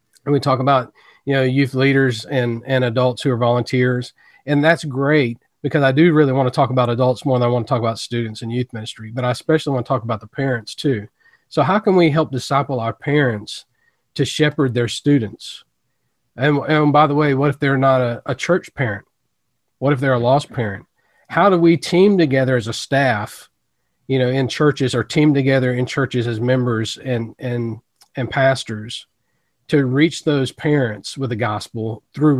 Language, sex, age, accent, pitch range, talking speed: English, male, 40-59, American, 120-150 Hz, 205 wpm